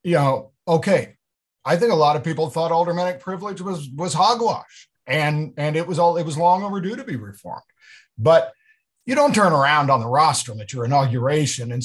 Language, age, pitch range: English, 50-69, 125-180 Hz